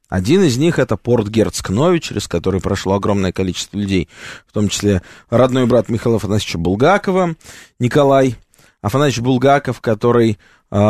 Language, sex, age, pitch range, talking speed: Russian, male, 20-39, 105-140 Hz, 130 wpm